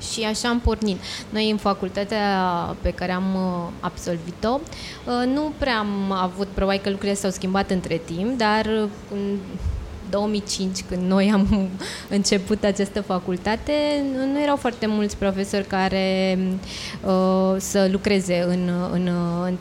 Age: 20-39